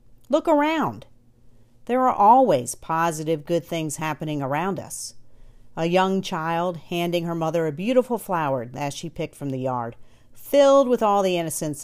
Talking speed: 155 wpm